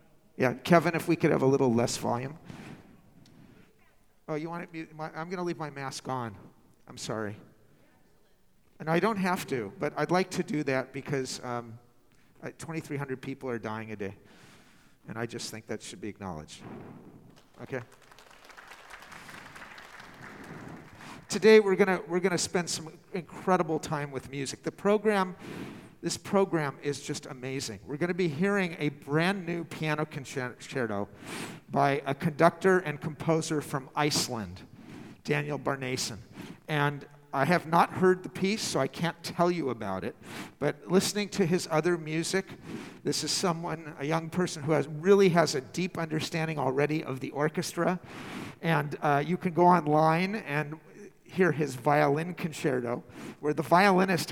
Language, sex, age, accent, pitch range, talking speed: English, male, 50-69, American, 135-175 Hz, 155 wpm